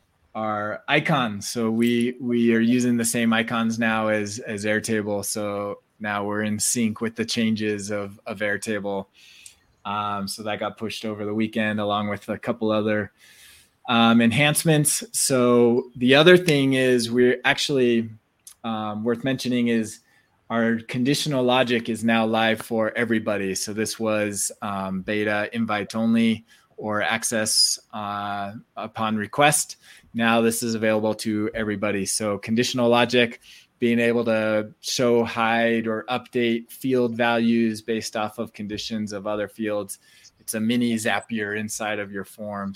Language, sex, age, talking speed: English, male, 20-39, 145 wpm